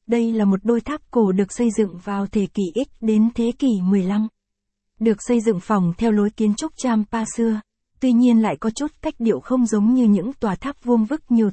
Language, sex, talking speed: Vietnamese, female, 225 wpm